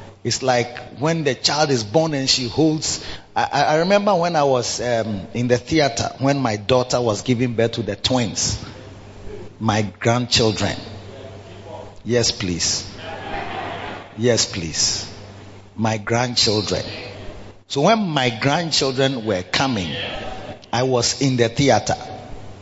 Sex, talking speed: male, 125 wpm